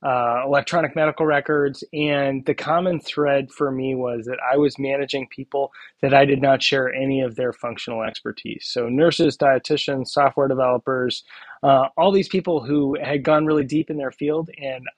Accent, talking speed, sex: American, 175 wpm, male